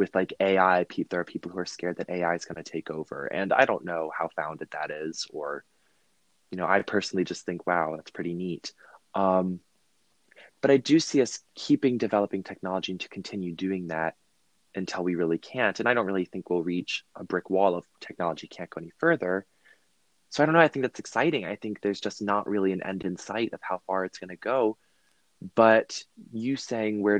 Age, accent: 20-39, American